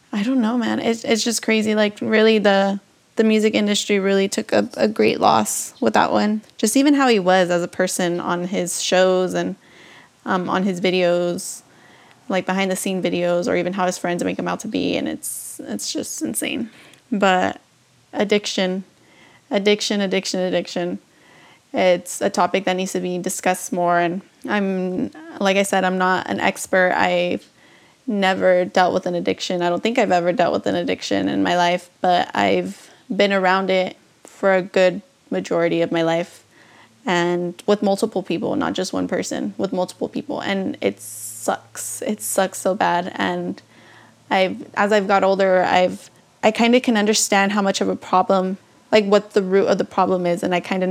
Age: 20-39